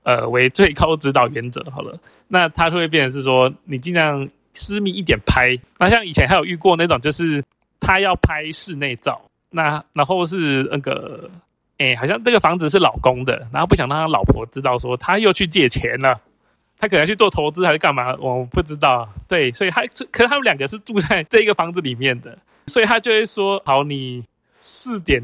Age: 20-39